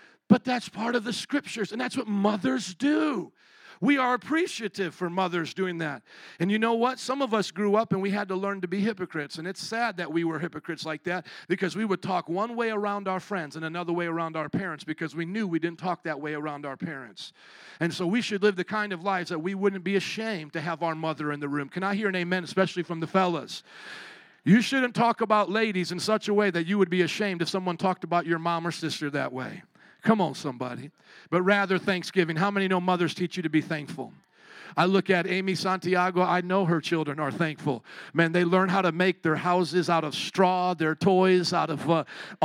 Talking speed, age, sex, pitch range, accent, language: 235 wpm, 40-59, male, 170-210 Hz, American, English